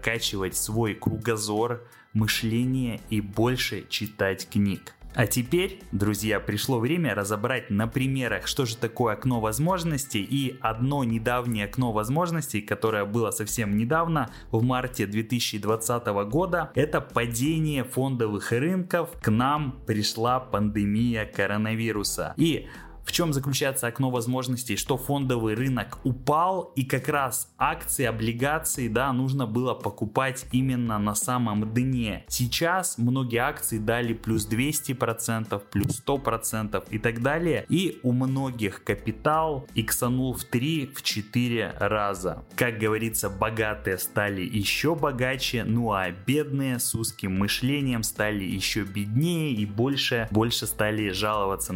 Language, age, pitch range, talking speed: Russian, 20-39, 105-130 Hz, 125 wpm